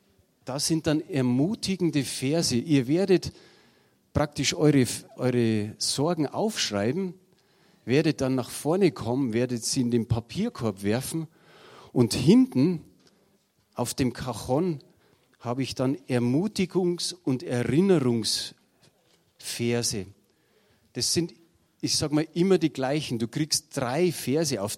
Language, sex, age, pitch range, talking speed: German, male, 40-59, 120-155 Hz, 115 wpm